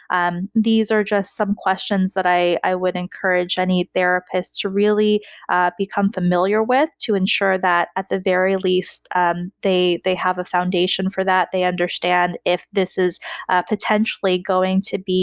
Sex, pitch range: female, 185-210 Hz